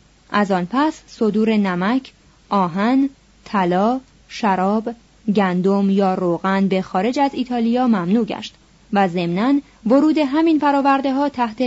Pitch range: 195-260 Hz